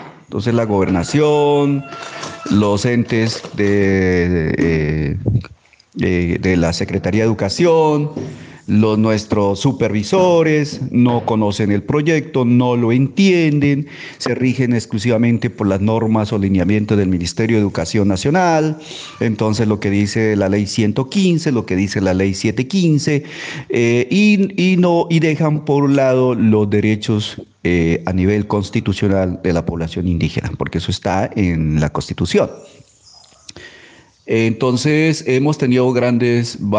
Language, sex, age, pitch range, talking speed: Spanish, male, 40-59, 100-135 Hz, 125 wpm